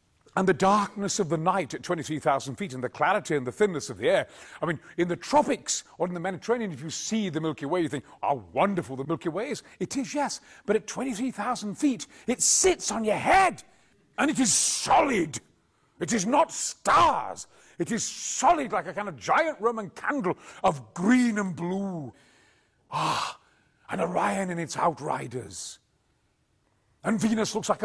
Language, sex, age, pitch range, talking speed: English, male, 40-59, 135-215 Hz, 185 wpm